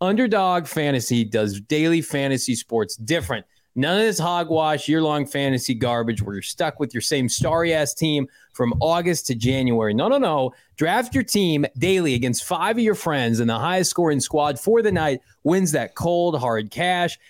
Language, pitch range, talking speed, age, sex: English, 125-180 Hz, 175 wpm, 30-49, male